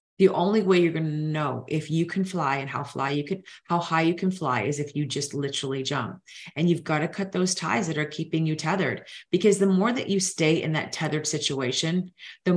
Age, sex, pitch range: 30-49, female, 145-185 Hz